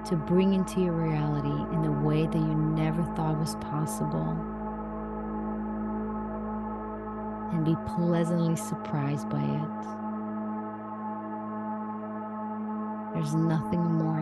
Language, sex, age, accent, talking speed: English, female, 40-59, American, 95 wpm